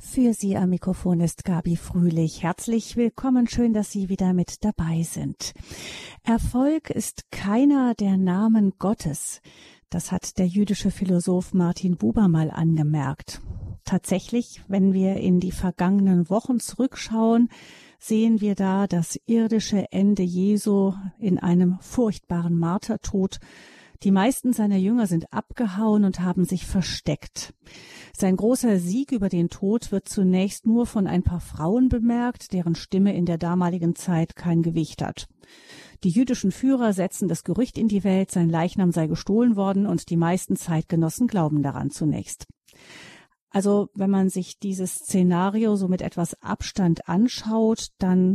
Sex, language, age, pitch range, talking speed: female, German, 40-59, 175-215 Hz, 145 wpm